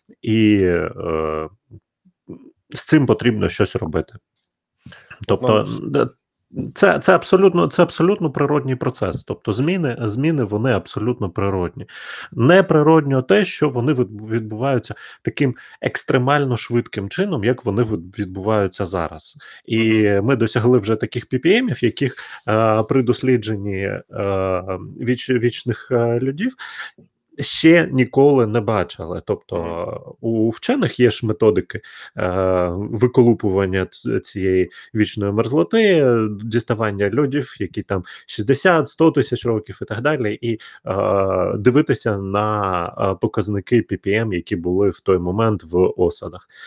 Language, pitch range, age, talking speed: Ukrainian, 100-135 Hz, 30-49, 110 wpm